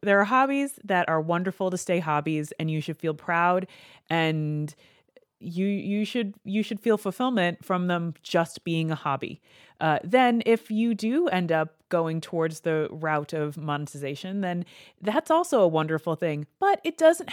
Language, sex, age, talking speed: English, female, 30-49, 175 wpm